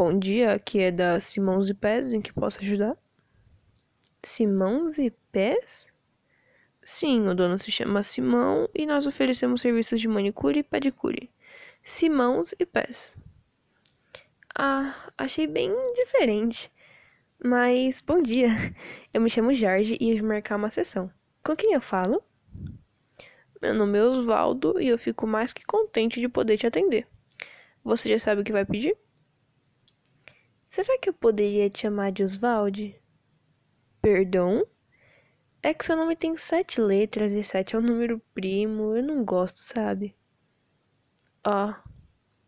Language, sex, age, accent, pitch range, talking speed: Portuguese, female, 10-29, Brazilian, 200-275 Hz, 145 wpm